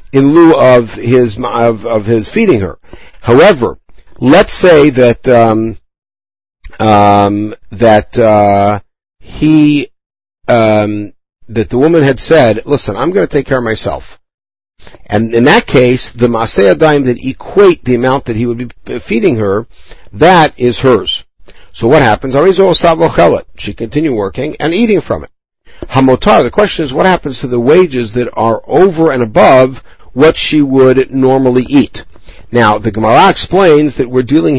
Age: 50-69